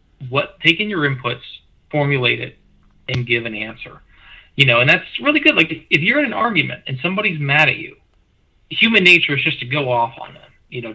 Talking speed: 215 wpm